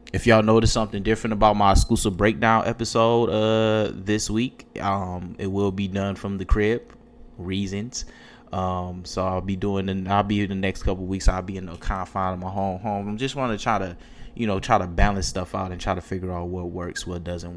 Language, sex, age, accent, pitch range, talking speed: English, male, 20-39, American, 95-115 Hz, 230 wpm